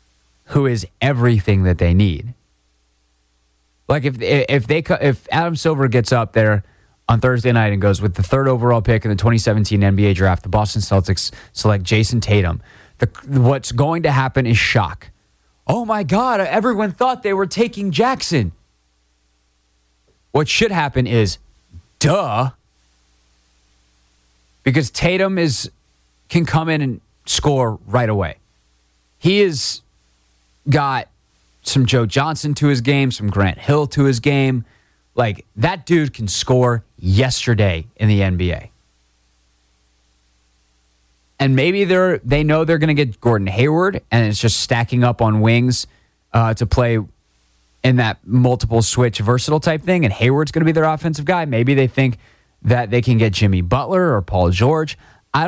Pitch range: 85-135 Hz